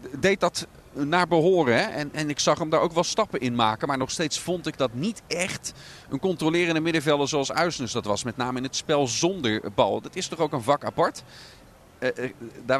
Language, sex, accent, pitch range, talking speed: Dutch, male, Dutch, 115-150 Hz, 225 wpm